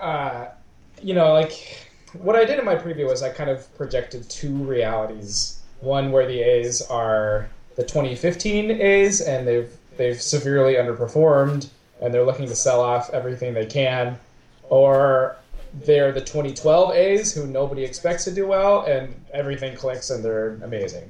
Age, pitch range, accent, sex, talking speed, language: 20-39, 115-150 Hz, American, male, 160 wpm, English